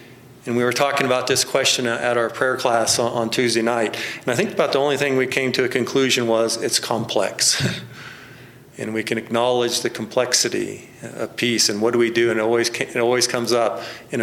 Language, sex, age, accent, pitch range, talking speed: English, male, 40-59, American, 115-130 Hz, 210 wpm